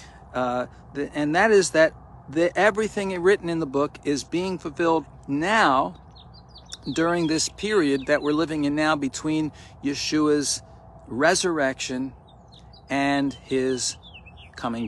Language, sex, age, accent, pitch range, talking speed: English, male, 50-69, American, 125-170 Hz, 120 wpm